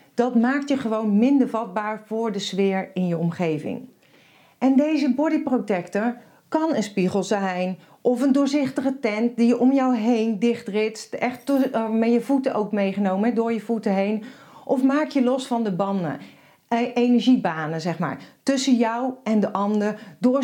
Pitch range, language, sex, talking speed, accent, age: 205-255 Hz, Dutch, female, 165 wpm, Dutch, 40-59